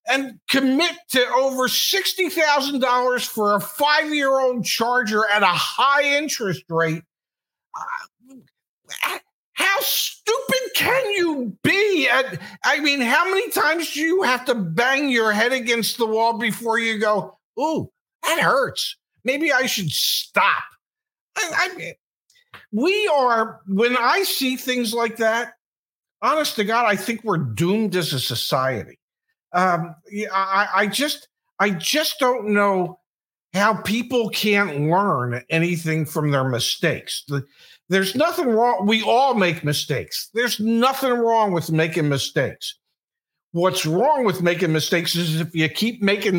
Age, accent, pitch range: 50-69, American, 175-270 Hz